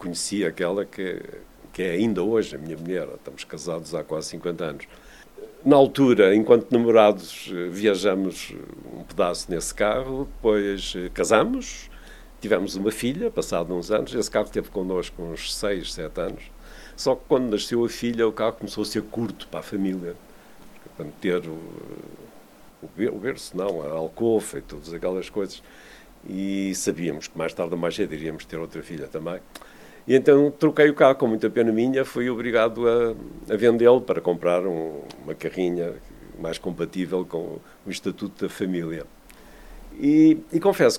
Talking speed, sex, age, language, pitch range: 160 wpm, male, 50-69, English, 95-135 Hz